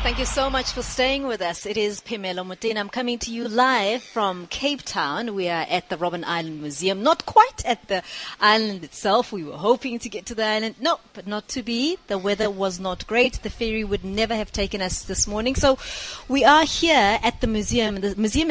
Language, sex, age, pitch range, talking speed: English, female, 30-49, 180-240 Hz, 220 wpm